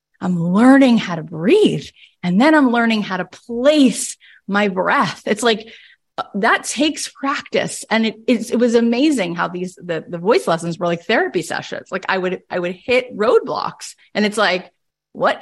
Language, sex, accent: English, female, American